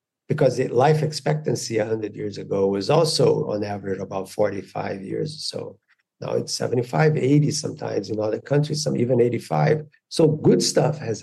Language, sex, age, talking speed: English, male, 50-69, 160 wpm